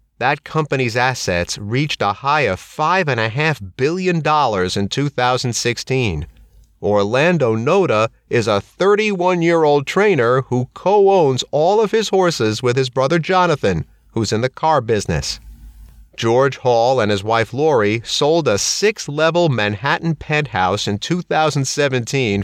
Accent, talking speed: American, 120 wpm